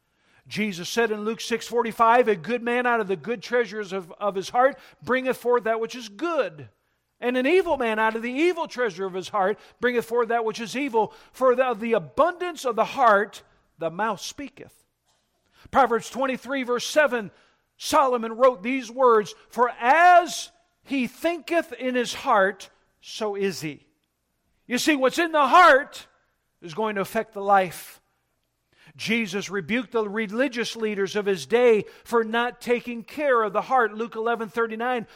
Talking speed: 175 wpm